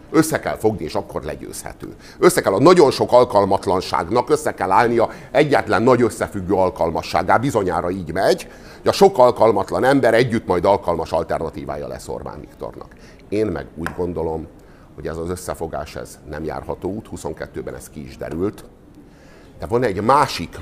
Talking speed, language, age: 160 wpm, Hungarian, 50-69